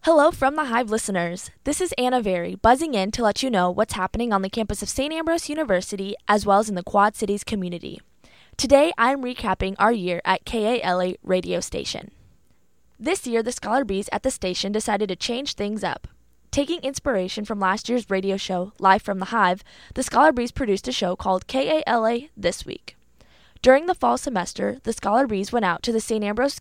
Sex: female